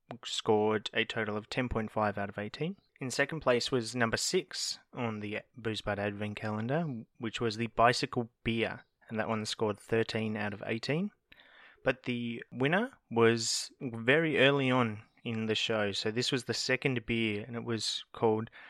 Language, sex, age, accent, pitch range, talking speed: English, male, 20-39, Australian, 110-130 Hz, 165 wpm